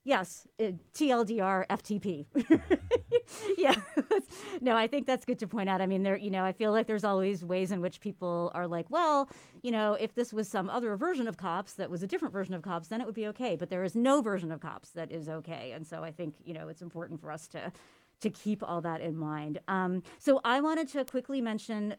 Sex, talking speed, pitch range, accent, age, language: female, 240 wpm, 180-225 Hz, American, 30-49, English